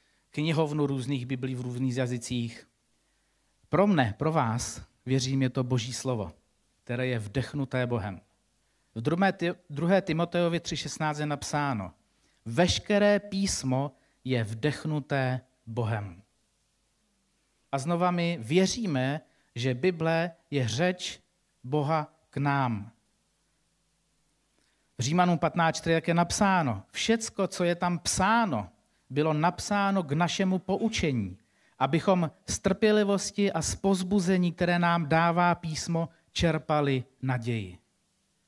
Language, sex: Czech, male